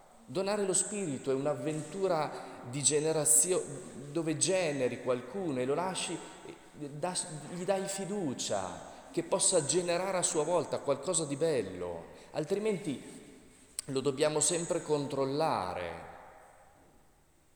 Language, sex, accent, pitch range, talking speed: Italian, male, native, 120-155 Hz, 105 wpm